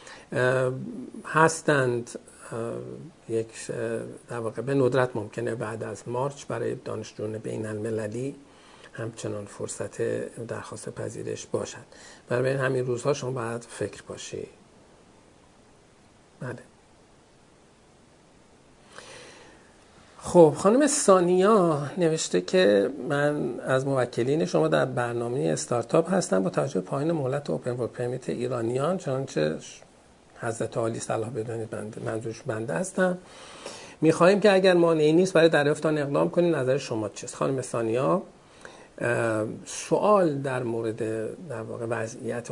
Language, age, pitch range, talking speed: Persian, 50-69, 115-155 Hz, 105 wpm